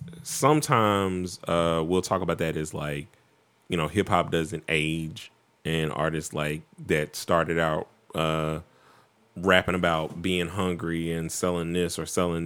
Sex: male